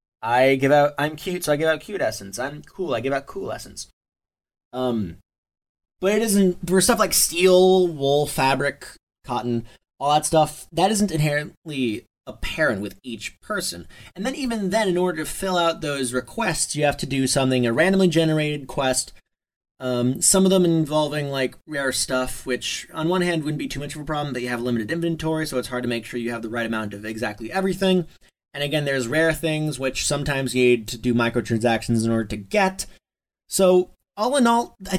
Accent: American